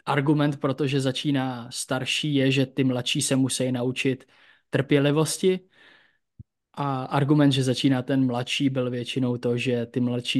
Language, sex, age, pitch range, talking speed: Czech, male, 20-39, 125-140 Hz, 140 wpm